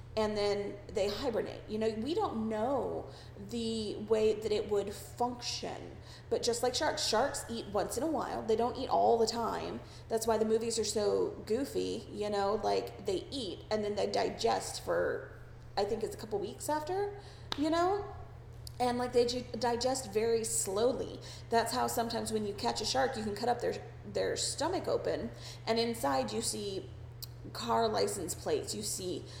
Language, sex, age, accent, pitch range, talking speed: English, female, 30-49, American, 205-275 Hz, 180 wpm